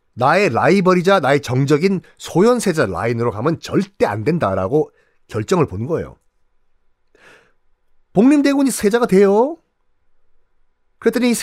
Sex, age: male, 40-59